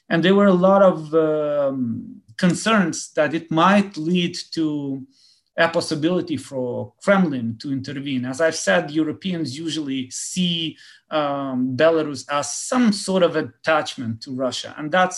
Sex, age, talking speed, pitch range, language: male, 30-49, 140 wpm, 135-175 Hz, French